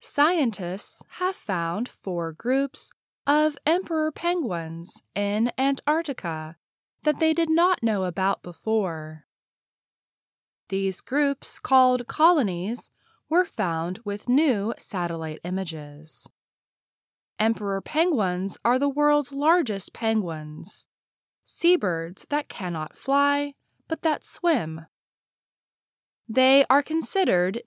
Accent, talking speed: American, 95 wpm